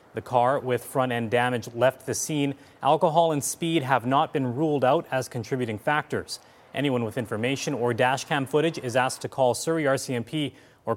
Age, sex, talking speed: 30-49, male, 175 wpm